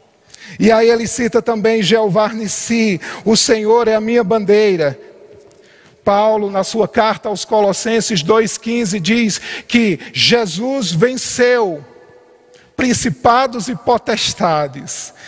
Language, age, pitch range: Portuguese, 50-69, 200-240 Hz